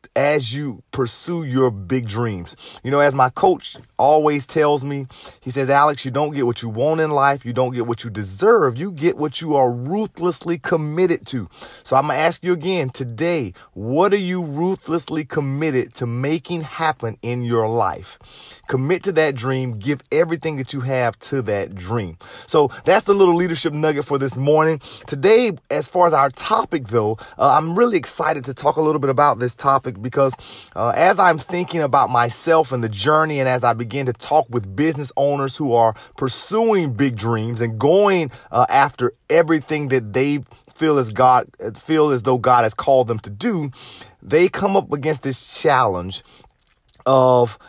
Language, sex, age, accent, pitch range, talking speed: English, male, 40-59, American, 125-160 Hz, 185 wpm